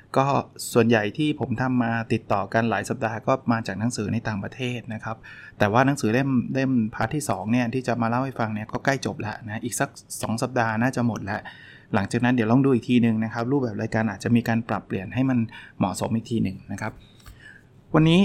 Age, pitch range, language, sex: 20-39, 110-135 Hz, Thai, male